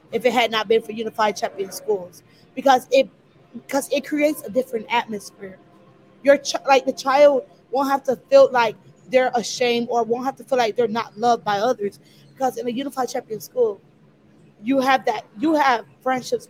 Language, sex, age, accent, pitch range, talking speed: English, female, 20-39, American, 215-265 Hz, 185 wpm